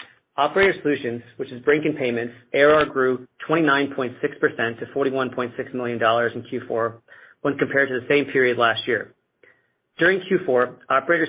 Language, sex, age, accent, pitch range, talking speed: English, male, 40-59, American, 125-145 Hz, 140 wpm